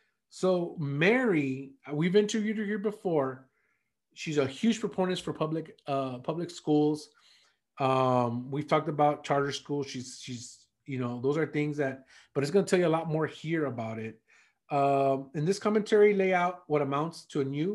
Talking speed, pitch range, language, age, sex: 180 wpm, 140-200 Hz, English, 30-49, male